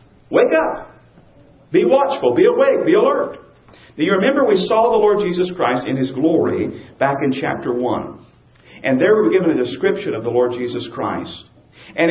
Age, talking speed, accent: 50-69, 185 wpm, American